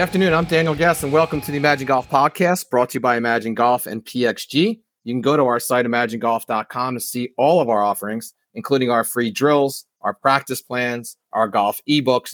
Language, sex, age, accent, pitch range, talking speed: English, male, 40-59, American, 120-150 Hz, 210 wpm